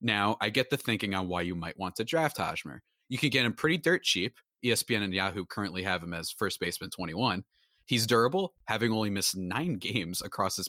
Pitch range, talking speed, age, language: 95-130 Hz, 220 wpm, 30-49, English